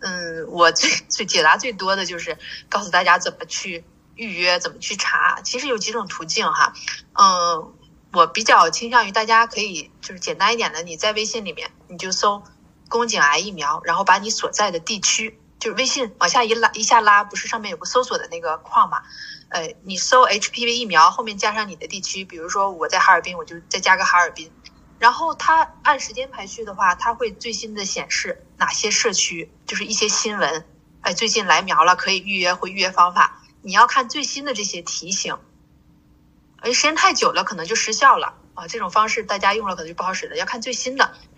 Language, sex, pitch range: Chinese, female, 180-240 Hz